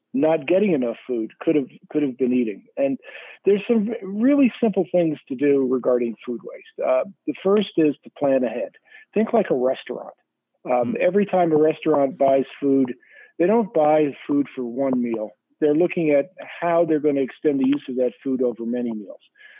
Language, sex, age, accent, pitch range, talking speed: English, male, 50-69, American, 135-185 Hz, 190 wpm